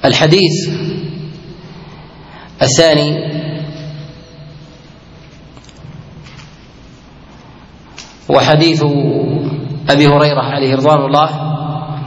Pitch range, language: 145-155 Hz, Arabic